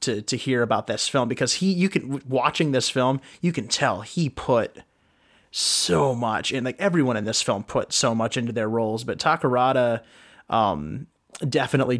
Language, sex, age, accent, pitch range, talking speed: English, male, 30-49, American, 120-145 Hz, 180 wpm